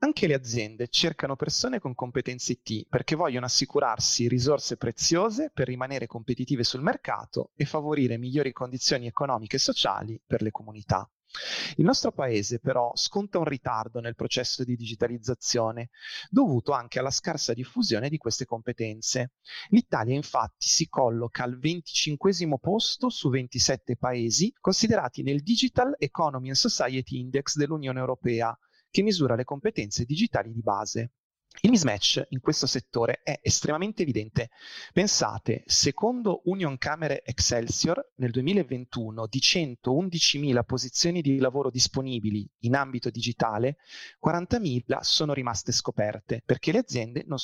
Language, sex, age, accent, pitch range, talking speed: Italian, male, 30-49, native, 120-155 Hz, 135 wpm